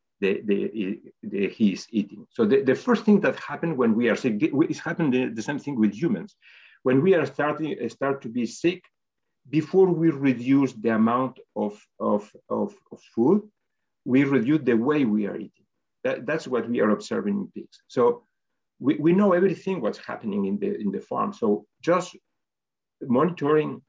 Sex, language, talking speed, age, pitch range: male, English, 180 wpm, 50-69, 115-185 Hz